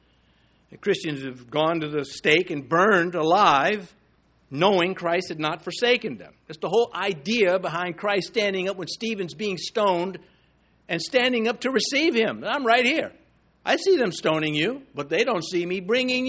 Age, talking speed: 60-79, 175 wpm